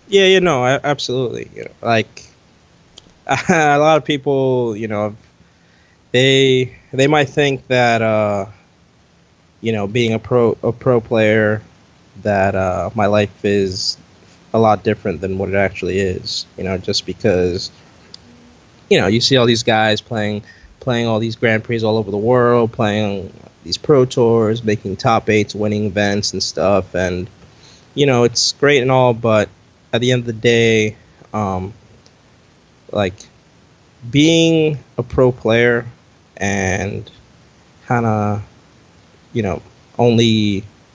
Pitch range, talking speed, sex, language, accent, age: 105-125 Hz, 145 wpm, male, English, American, 20-39